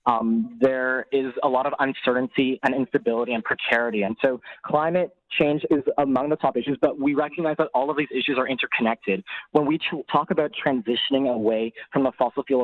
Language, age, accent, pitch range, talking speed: English, 20-39, American, 120-145 Hz, 190 wpm